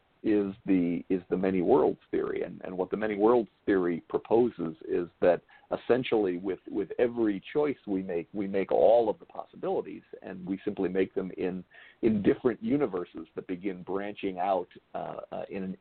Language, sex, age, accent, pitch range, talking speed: English, male, 50-69, American, 95-150 Hz, 180 wpm